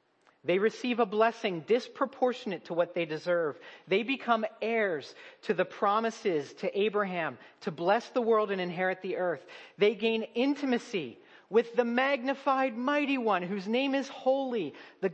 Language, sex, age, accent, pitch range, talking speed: English, male, 40-59, American, 155-225 Hz, 150 wpm